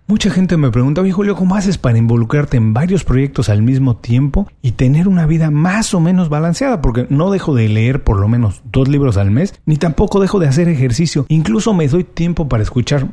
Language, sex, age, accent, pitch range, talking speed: Spanish, male, 40-59, Mexican, 115-170 Hz, 220 wpm